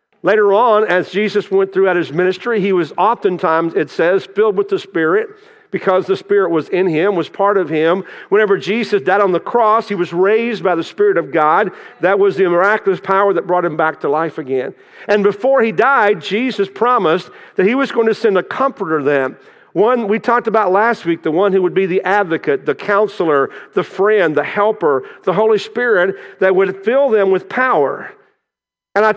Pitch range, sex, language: 185-240 Hz, male, English